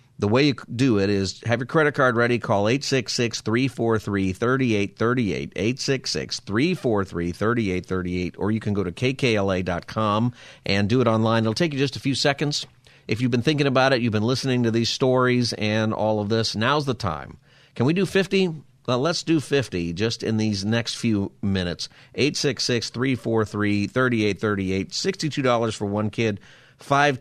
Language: English